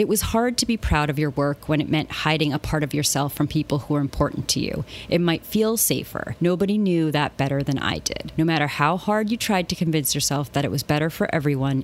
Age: 30-49